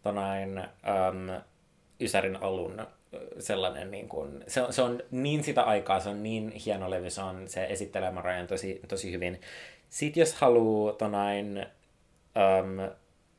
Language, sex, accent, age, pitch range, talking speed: Finnish, male, native, 20-39, 95-110 Hz, 140 wpm